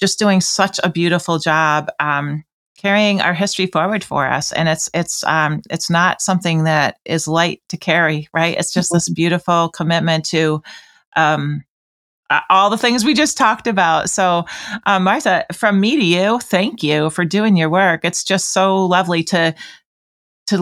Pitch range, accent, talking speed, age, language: 165-200 Hz, American, 170 wpm, 30-49, English